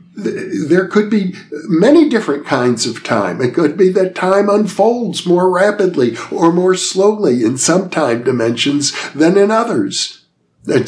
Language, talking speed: English, 150 wpm